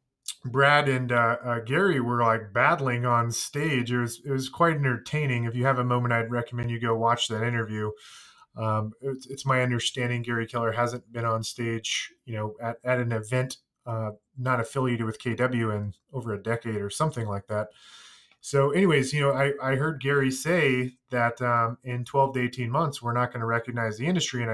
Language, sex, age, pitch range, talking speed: English, male, 20-39, 115-145 Hz, 200 wpm